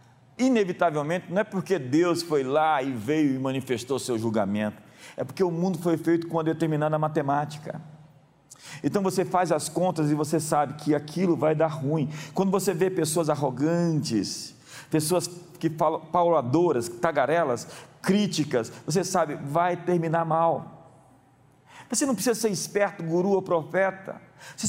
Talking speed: 145 wpm